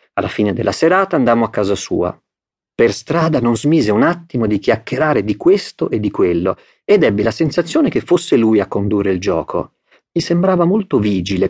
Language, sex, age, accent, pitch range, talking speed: Italian, male, 40-59, native, 105-150 Hz, 190 wpm